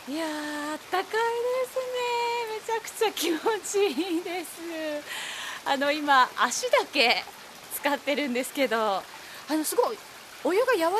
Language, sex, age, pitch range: Japanese, female, 20-39, 220-345 Hz